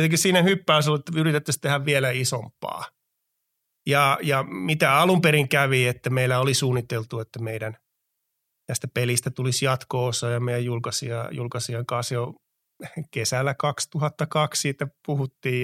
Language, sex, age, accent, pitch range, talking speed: Finnish, male, 30-49, native, 120-145 Hz, 130 wpm